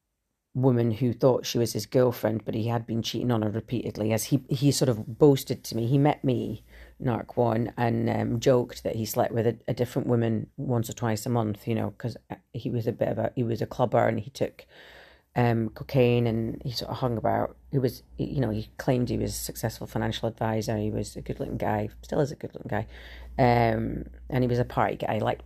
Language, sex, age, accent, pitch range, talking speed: English, female, 40-59, British, 110-125 Hz, 240 wpm